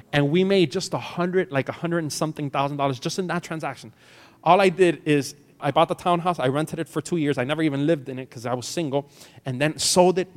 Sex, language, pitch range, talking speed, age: male, English, 145-190 Hz, 260 wpm, 30-49